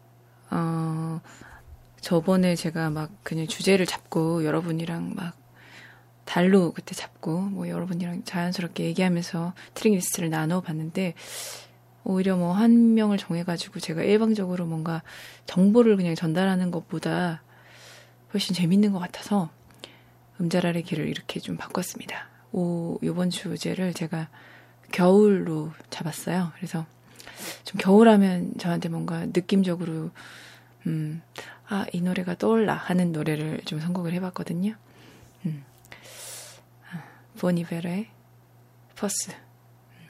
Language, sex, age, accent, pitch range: Korean, female, 20-39, native, 155-185 Hz